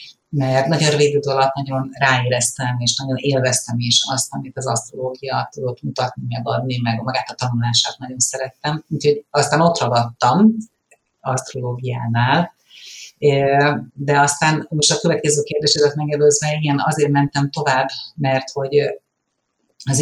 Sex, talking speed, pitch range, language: female, 130 wpm, 135-150 Hz, Hungarian